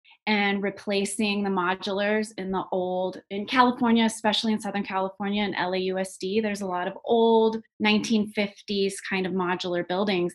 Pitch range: 180-210 Hz